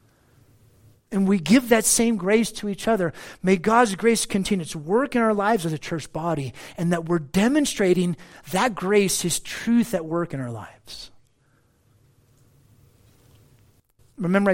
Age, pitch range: 50-69, 125-185 Hz